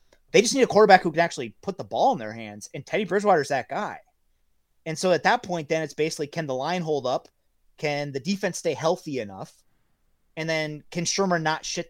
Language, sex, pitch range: English, male, 140-185 Hz